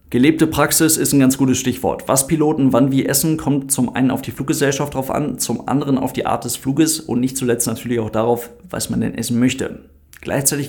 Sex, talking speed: male, 220 wpm